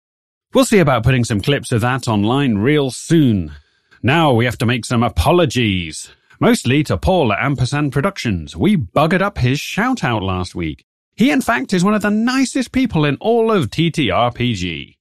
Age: 30-49